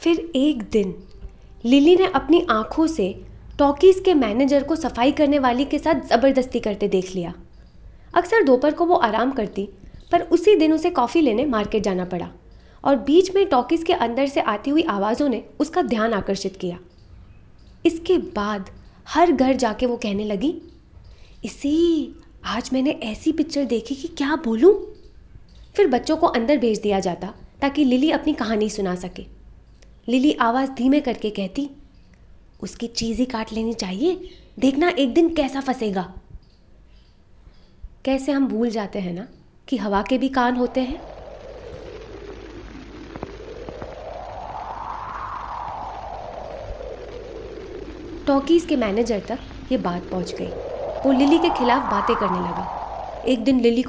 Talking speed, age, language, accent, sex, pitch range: 140 wpm, 20-39, Hindi, native, female, 220-330 Hz